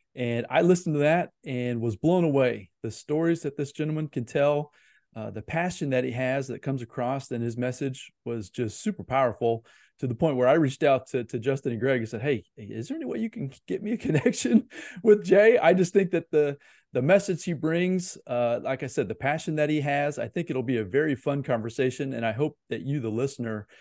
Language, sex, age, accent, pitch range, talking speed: English, male, 30-49, American, 115-150 Hz, 230 wpm